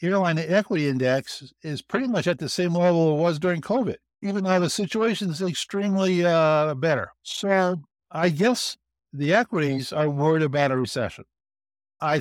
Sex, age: male, 60-79